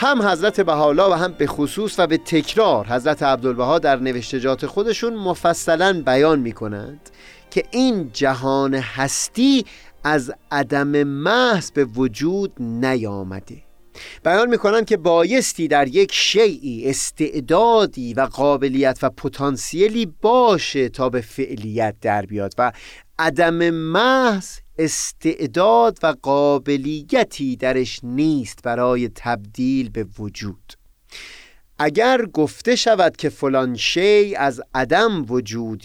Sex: male